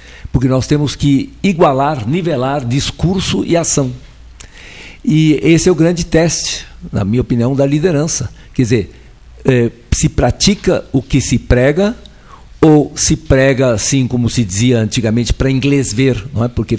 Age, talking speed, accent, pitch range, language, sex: 60-79, 150 wpm, Brazilian, 120-170 Hz, Portuguese, male